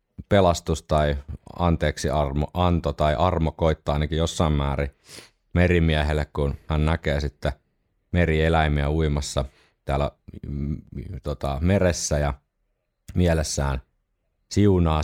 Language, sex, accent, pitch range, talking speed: Finnish, male, native, 70-85 Hz, 95 wpm